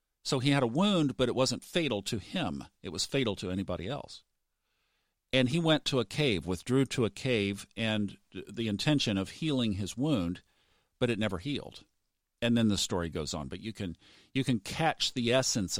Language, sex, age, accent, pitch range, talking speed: English, male, 50-69, American, 100-130 Hz, 200 wpm